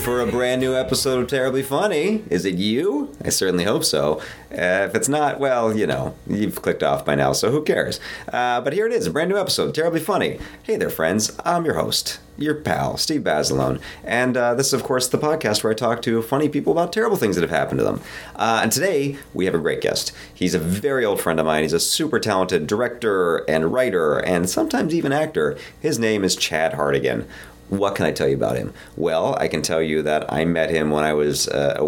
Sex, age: male, 30-49